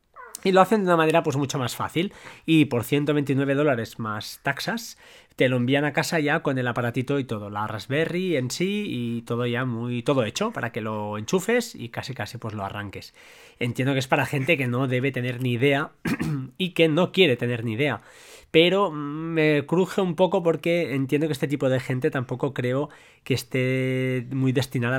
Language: Spanish